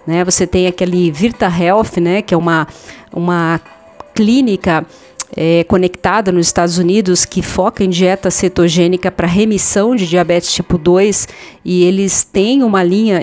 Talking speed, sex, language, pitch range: 145 wpm, female, Portuguese, 170-200 Hz